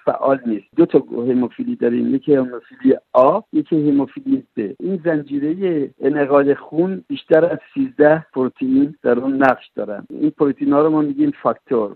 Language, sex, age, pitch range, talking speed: Persian, male, 60-79, 125-160 Hz, 150 wpm